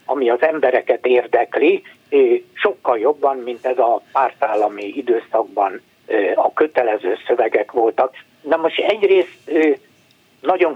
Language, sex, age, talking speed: Hungarian, male, 60-79, 105 wpm